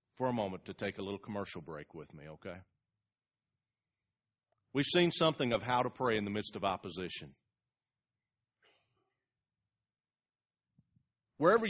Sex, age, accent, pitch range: male, 40-59, American, 125-180 Hz